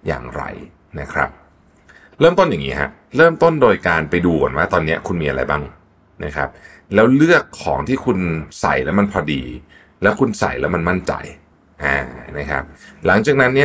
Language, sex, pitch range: Thai, male, 75-120 Hz